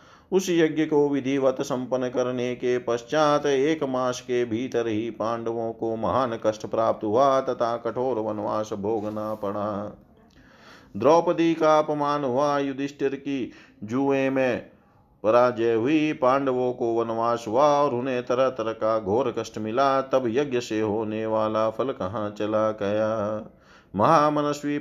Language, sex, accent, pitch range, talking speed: Hindi, male, native, 110-135 Hz, 135 wpm